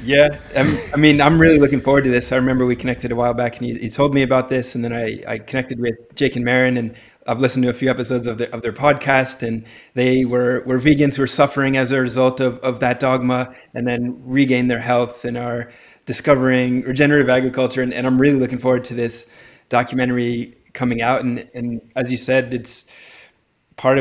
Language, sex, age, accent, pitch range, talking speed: English, male, 20-39, American, 120-130 Hz, 215 wpm